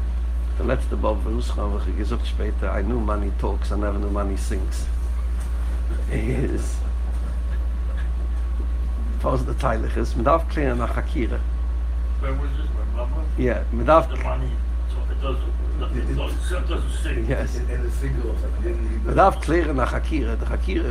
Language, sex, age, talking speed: English, male, 60-79, 70 wpm